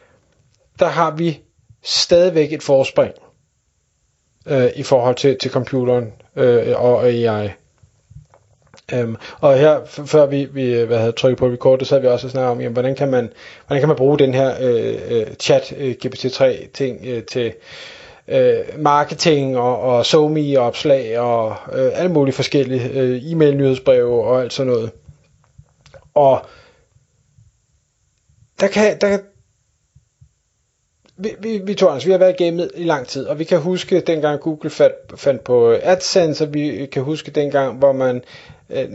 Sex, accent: male, native